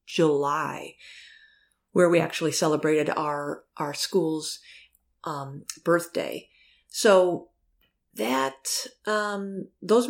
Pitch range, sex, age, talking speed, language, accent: 155-185 Hz, female, 30-49, 85 wpm, English, American